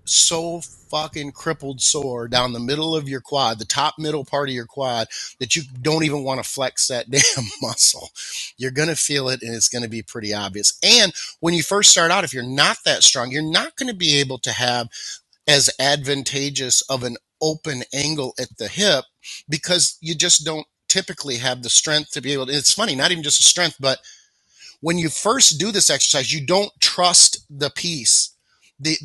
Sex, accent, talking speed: male, American, 205 wpm